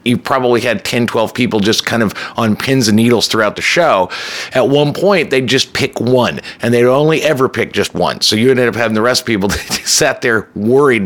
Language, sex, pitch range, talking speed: English, male, 110-135 Hz, 235 wpm